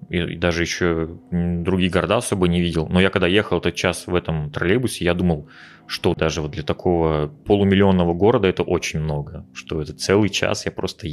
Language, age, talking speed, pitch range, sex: Russian, 20-39, 190 wpm, 85-105 Hz, male